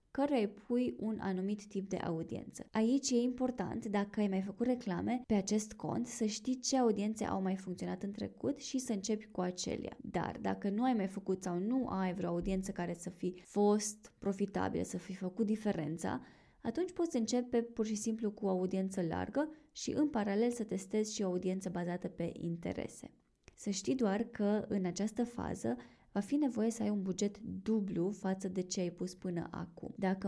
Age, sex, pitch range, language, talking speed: 20-39, female, 185-225 Hz, Romanian, 190 wpm